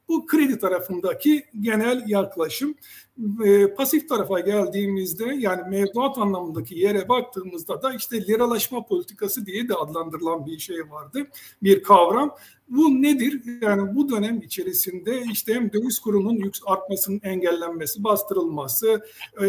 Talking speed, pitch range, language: 115 wpm, 195-245 Hz, Turkish